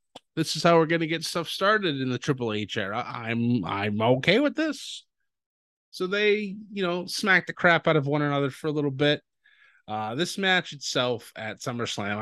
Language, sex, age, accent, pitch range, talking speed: English, male, 20-39, American, 115-165 Hz, 195 wpm